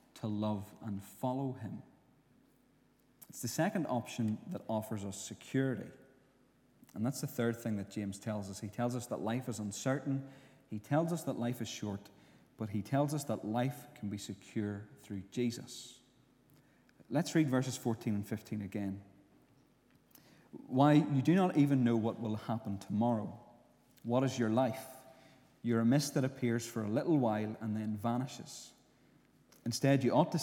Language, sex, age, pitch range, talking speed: English, male, 30-49, 110-135 Hz, 165 wpm